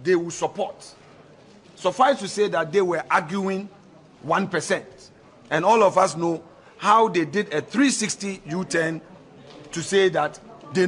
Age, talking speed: 50-69, 145 wpm